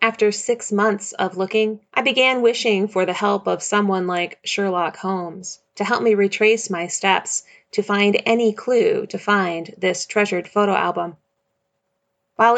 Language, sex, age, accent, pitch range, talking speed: English, female, 30-49, American, 185-220 Hz, 155 wpm